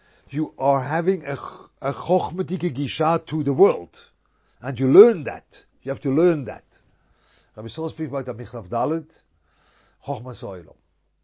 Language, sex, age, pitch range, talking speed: English, male, 50-69, 110-145 Hz, 130 wpm